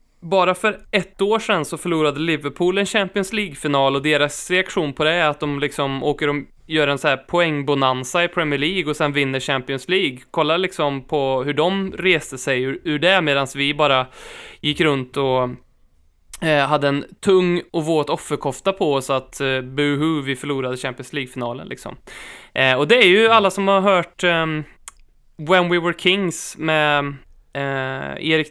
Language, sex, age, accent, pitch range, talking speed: Swedish, male, 20-39, native, 140-175 Hz, 175 wpm